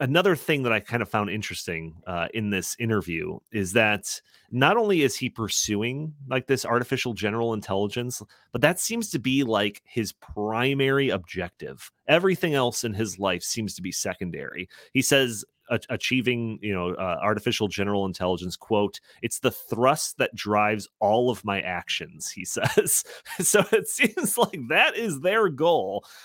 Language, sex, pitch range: English, male, 100-150 Hz